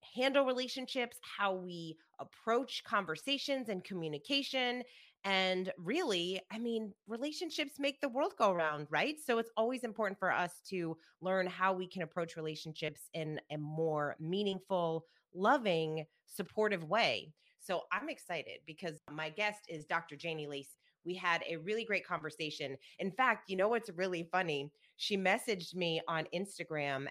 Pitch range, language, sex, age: 160-215 Hz, English, female, 30-49